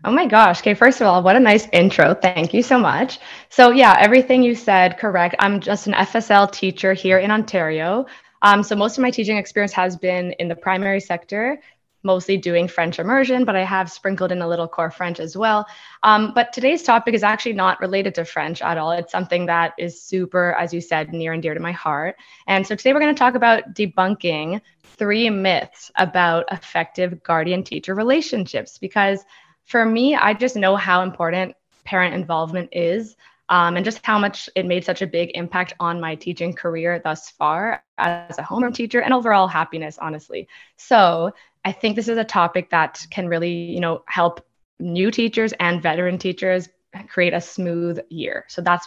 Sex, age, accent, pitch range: female, 20-39, American, 170-215 Hz